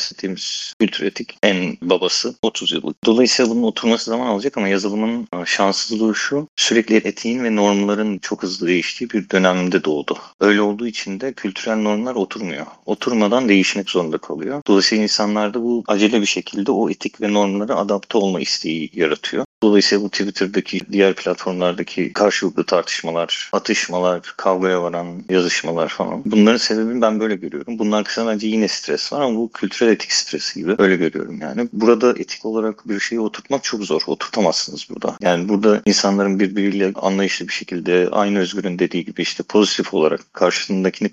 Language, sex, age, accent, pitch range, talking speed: English, male, 40-59, Turkish, 95-110 Hz, 155 wpm